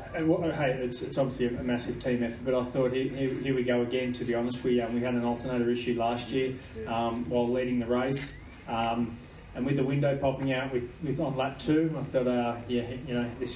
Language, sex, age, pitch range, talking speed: English, male, 20-39, 125-140 Hz, 250 wpm